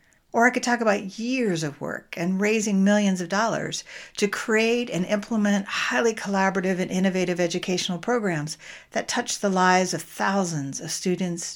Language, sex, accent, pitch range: English, female, American, 165-215 Hz